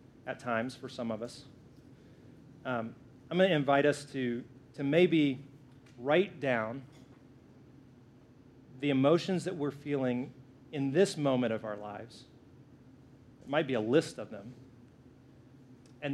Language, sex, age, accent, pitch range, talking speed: English, male, 30-49, American, 125-135 Hz, 135 wpm